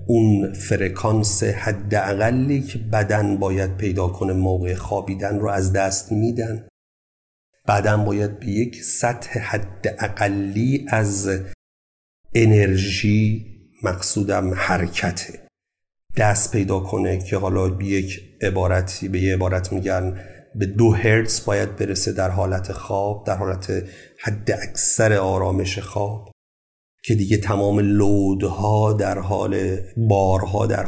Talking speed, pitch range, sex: 115 wpm, 95-110 Hz, male